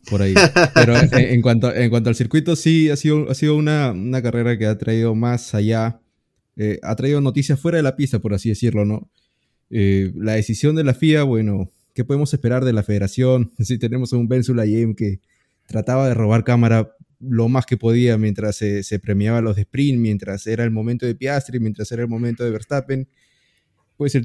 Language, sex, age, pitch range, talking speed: Spanish, male, 20-39, 105-130 Hz, 210 wpm